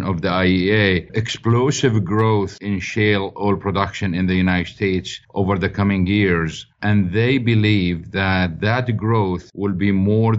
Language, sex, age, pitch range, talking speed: English, male, 50-69, 95-115 Hz, 150 wpm